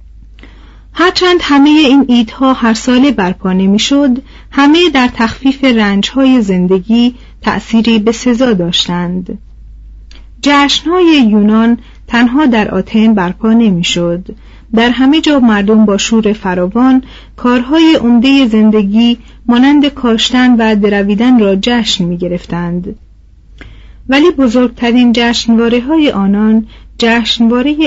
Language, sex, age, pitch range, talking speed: Persian, female, 40-59, 200-255 Hz, 100 wpm